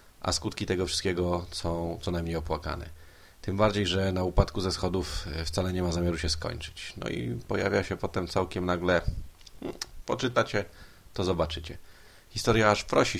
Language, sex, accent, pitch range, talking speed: Polish, male, native, 85-95 Hz, 155 wpm